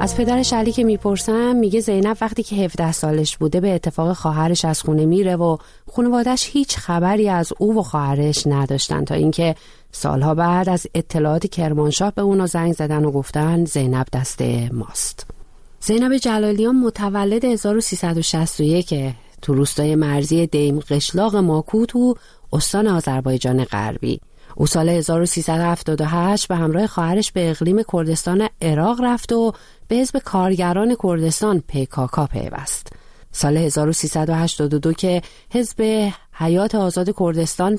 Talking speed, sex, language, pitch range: 130 wpm, female, Persian, 145-205 Hz